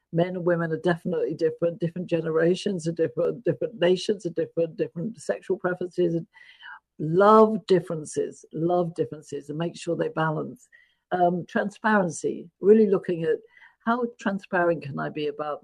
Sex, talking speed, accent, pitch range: female, 145 wpm, British, 165-220 Hz